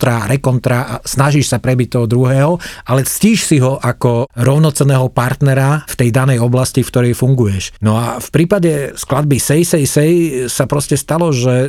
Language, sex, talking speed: Slovak, male, 165 wpm